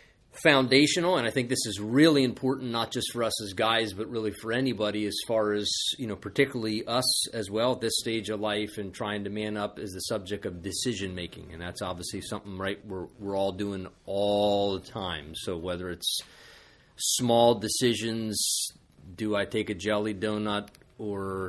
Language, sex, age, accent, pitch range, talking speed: English, male, 30-49, American, 105-115 Hz, 185 wpm